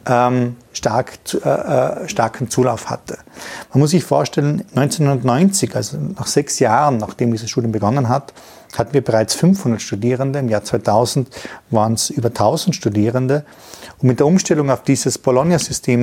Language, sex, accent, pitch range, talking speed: German, male, German, 115-140 Hz, 145 wpm